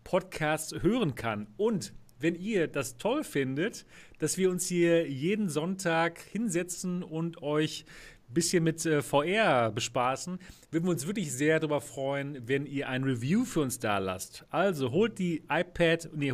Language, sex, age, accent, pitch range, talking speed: German, male, 40-59, German, 135-170 Hz, 160 wpm